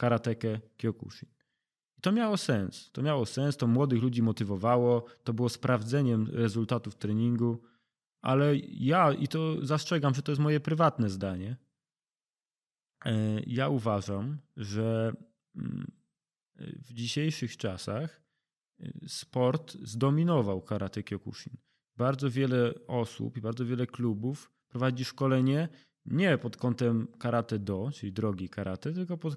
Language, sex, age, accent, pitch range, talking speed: Polish, male, 20-39, native, 115-155 Hz, 120 wpm